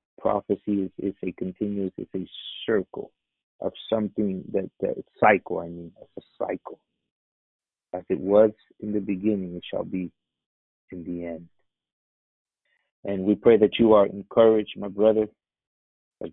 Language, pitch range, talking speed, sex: English, 95-105 Hz, 145 wpm, male